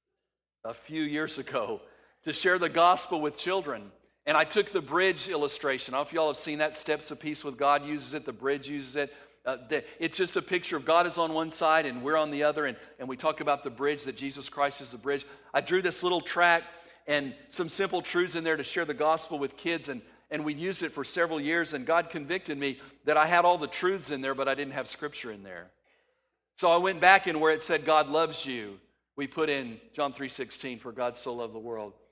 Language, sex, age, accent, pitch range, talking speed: English, male, 50-69, American, 135-170 Hz, 245 wpm